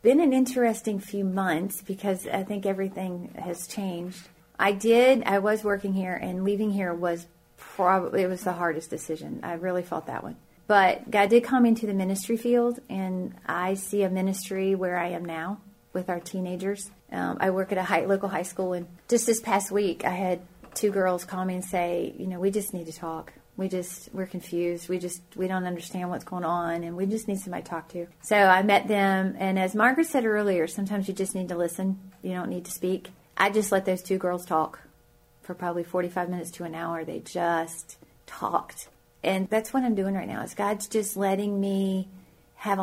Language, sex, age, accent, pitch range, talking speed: English, female, 30-49, American, 180-200 Hz, 210 wpm